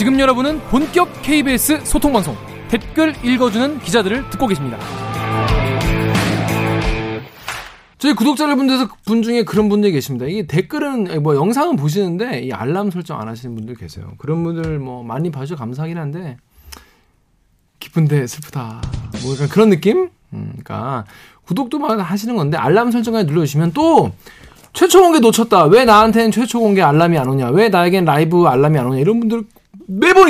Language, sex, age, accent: Korean, male, 20-39, native